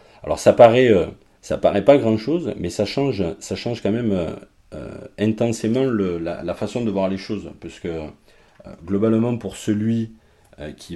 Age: 40-59